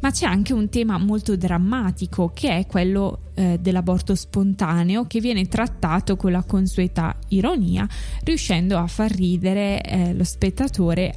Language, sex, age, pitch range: Italian, female, 20-39, 175-215 Hz